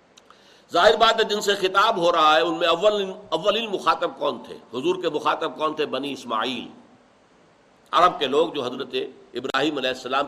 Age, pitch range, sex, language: 60-79, 185-275 Hz, male, Urdu